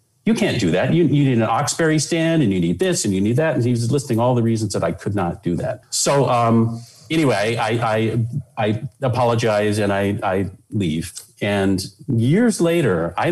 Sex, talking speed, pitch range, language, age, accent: male, 205 wpm, 100-130 Hz, English, 40-59, American